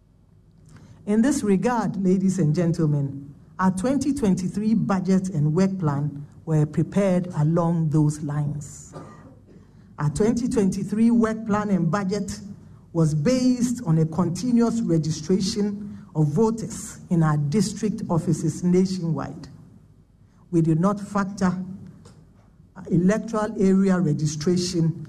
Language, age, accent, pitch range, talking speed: English, 50-69, Nigerian, 160-205 Hz, 105 wpm